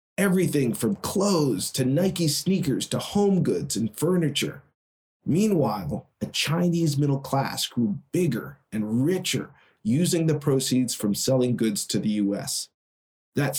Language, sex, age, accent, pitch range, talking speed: English, male, 40-59, American, 115-155 Hz, 135 wpm